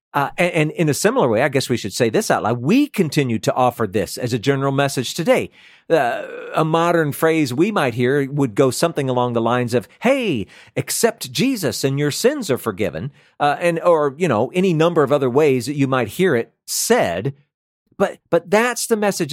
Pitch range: 130-190 Hz